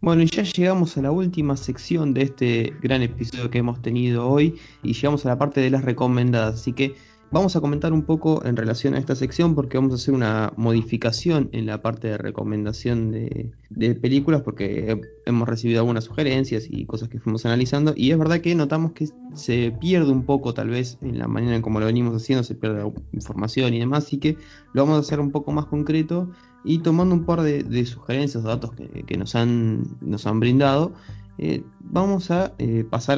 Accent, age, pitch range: Argentinian, 20-39, 115-150 Hz